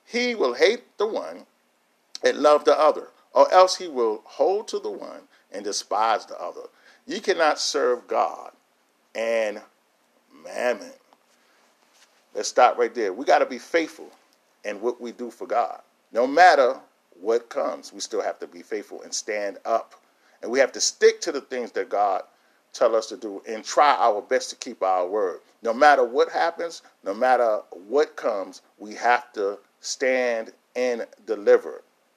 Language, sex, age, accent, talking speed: English, male, 40-59, American, 170 wpm